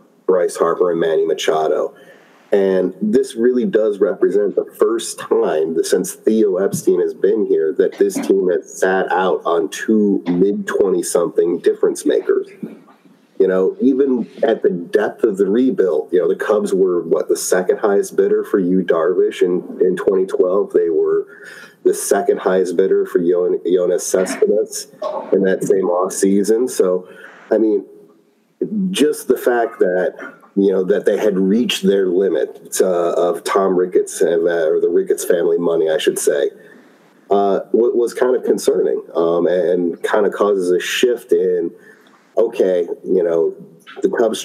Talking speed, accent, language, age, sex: 150 wpm, American, English, 30-49, male